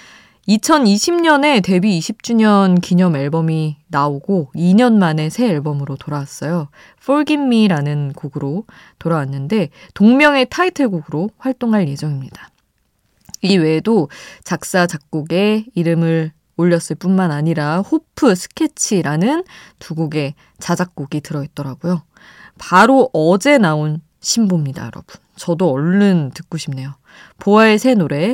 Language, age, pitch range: Korean, 20-39, 155-230 Hz